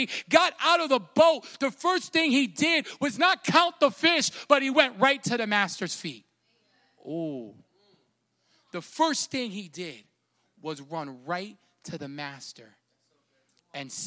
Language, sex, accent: English, male, American